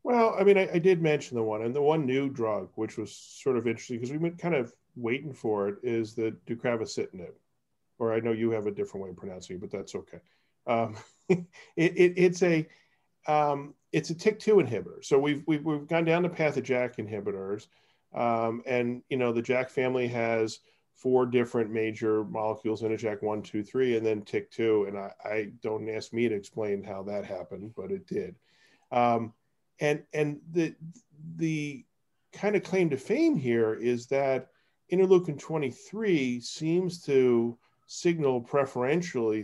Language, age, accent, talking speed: English, 40-59, American, 180 wpm